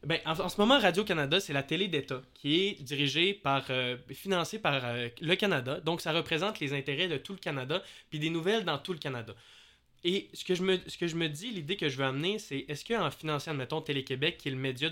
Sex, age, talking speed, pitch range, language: male, 20-39, 245 wpm, 140-185 Hz, French